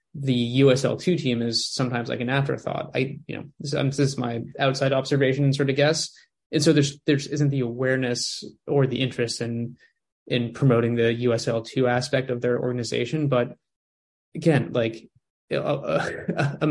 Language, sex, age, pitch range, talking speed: English, male, 20-39, 120-145 Hz, 170 wpm